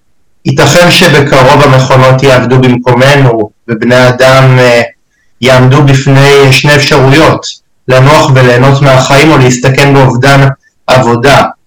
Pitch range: 125-140 Hz